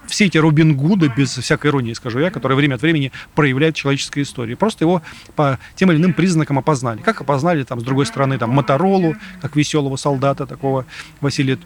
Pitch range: 135-165 Hz